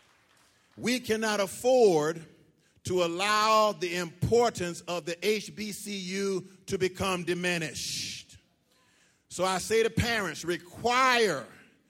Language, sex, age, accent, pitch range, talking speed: English, male, 50-69, American, 165-210 Hz, 95 wpm